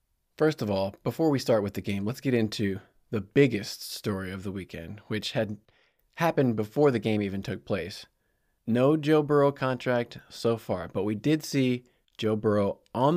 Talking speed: 180 wpm